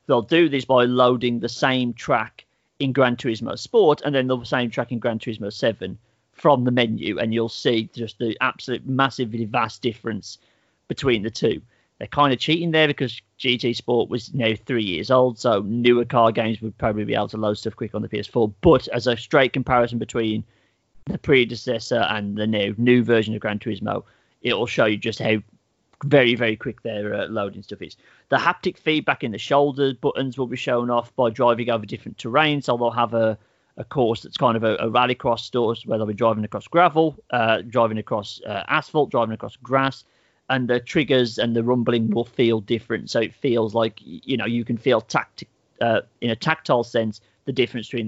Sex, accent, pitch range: male, British, 110-130 Hz